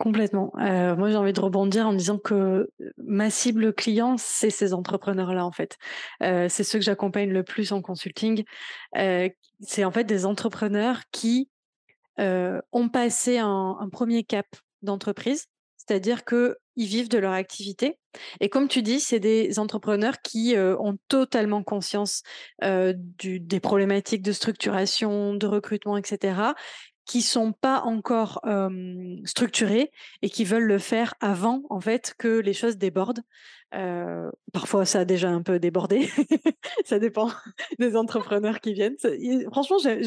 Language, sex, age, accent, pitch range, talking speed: French, female, 20-39, French, 200-240 Hz, 150 wpm